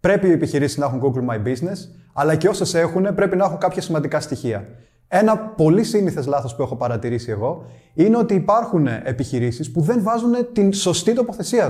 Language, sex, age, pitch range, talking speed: Greek, male, 30-49, 125-205 Hz, 185 wpm